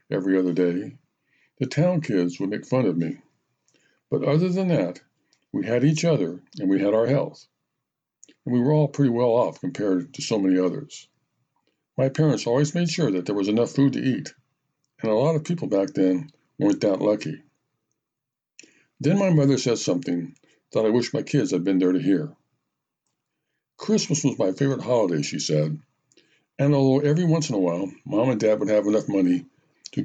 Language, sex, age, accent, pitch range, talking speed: English, male, 60-79, American, 110-150 Hz, 190 wpm